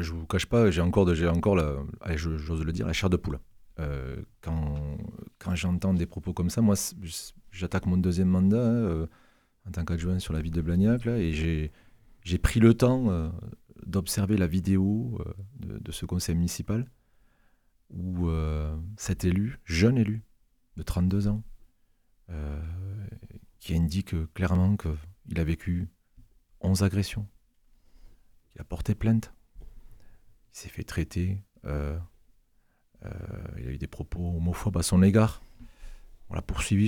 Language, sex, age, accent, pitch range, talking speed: French, male, 40-59, French, 85-110 Hz, 155 wpm